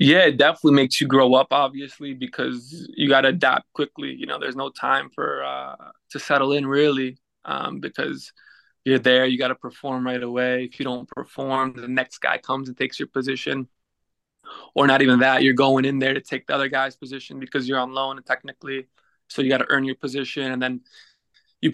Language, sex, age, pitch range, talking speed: English, male, 20-39, 130-140 Hz, 215 wpm